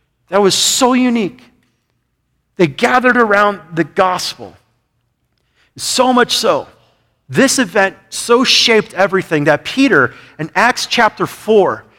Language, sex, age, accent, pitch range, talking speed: English, male, 40-59, American, 170-245 Hz, 115 wpm